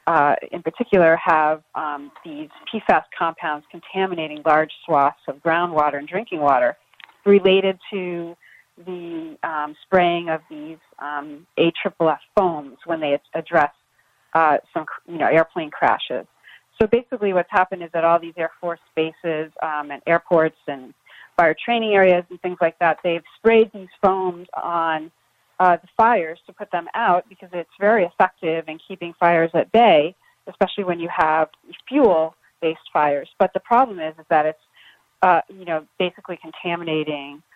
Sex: female